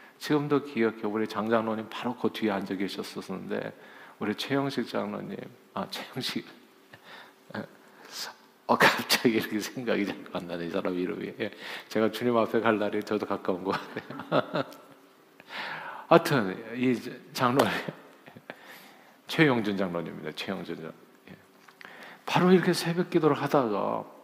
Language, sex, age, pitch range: Korean, male, 50-69, 110-145 Hz